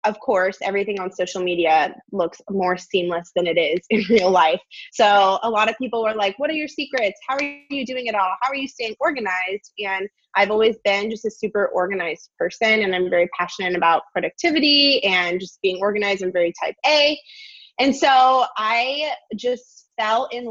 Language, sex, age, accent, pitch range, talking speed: English, female, 20-39, American, 185-225 Hz, 195 wpm